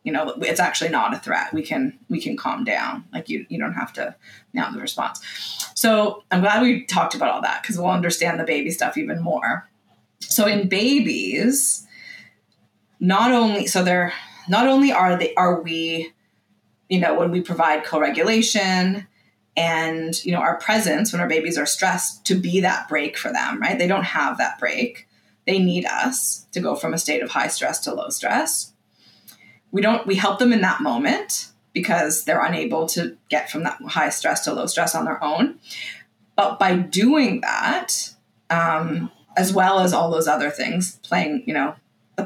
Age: 20-39